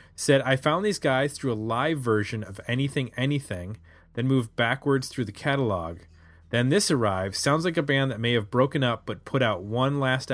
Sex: male